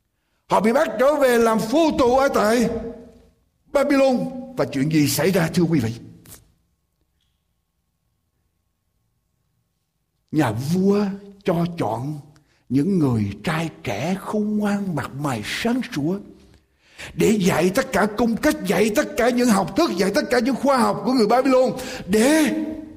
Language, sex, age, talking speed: Vietnamese, male, 60-79, 145 wpm